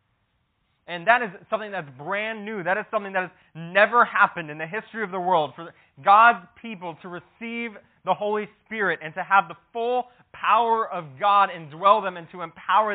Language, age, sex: English, 20-39, male